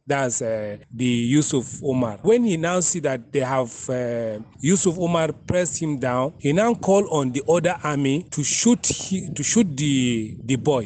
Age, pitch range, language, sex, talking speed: 30-49, 130-165 Hz, English, male, 180 wpm